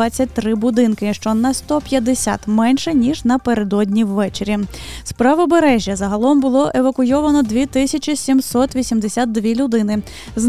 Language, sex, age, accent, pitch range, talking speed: Ukrainian, female, 20-39, native, 225-275 Hz, 95 wpm